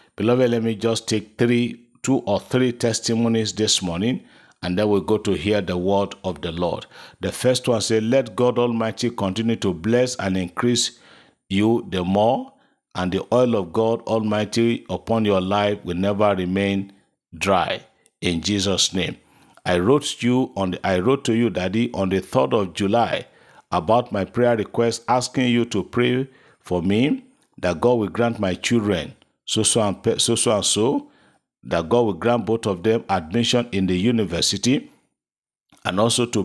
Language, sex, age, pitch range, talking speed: English, male, 50-69, 95-120 Hz, 175 wpm